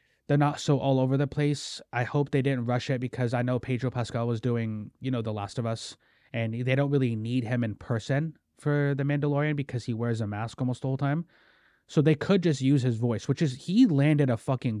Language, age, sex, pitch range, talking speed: English, 20-39, male, 120-155 Hz, 240 wpm